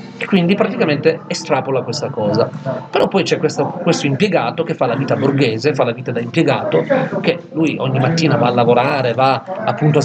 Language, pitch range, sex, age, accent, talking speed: Italian, 150-185 Hz, male, 40-59, native, 185 wpm